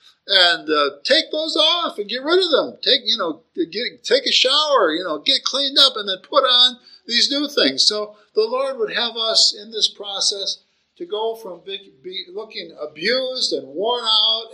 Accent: American